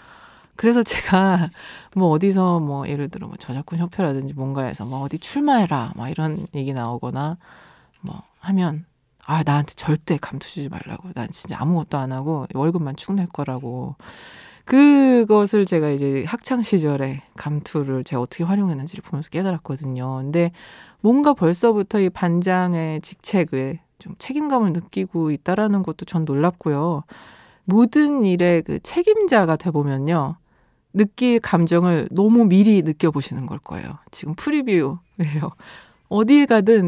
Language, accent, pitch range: Korean, native, 155-215 Hz